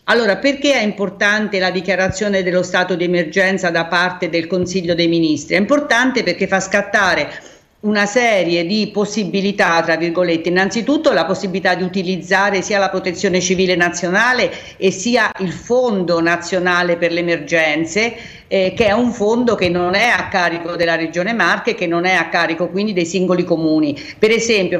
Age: 50-69